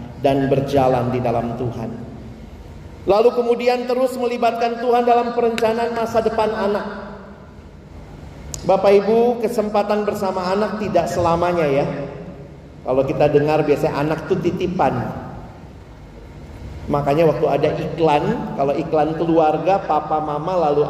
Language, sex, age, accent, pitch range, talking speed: Indonesian, male, 40-59, native, 150-220 Hz, 115 wpm